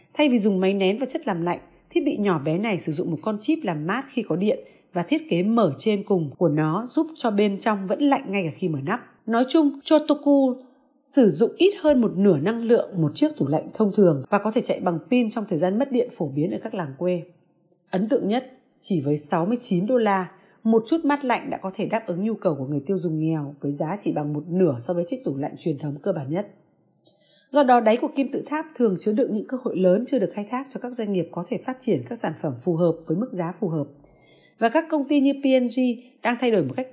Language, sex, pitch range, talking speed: Vietnamese, female, 175-250 Hz, 265 wpm